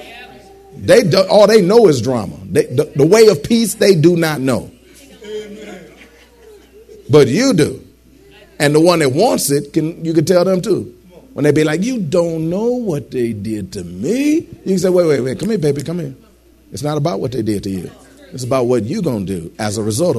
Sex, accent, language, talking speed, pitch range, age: male, American, English, 215 wpm, 140-205 Hz, 40-59